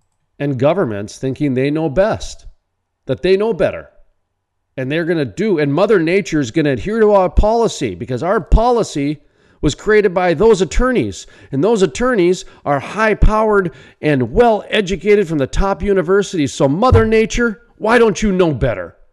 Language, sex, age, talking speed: English, male, 50-69, 165 wpm